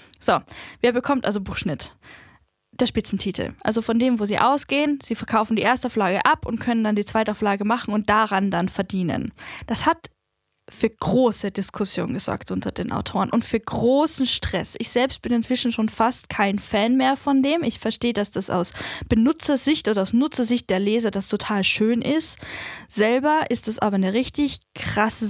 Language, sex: German, female